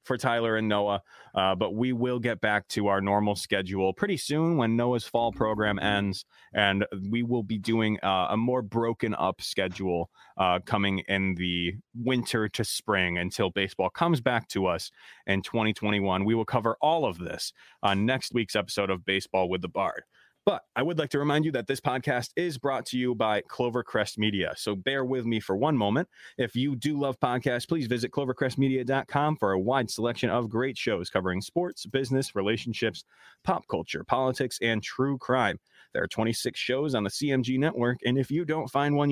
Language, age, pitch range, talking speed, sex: English, 20-39, 105-135 Hz, 190 wpm, male